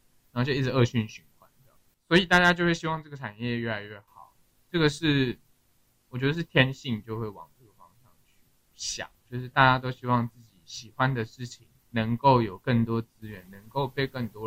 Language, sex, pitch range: Chinese, male, 115-135 Hz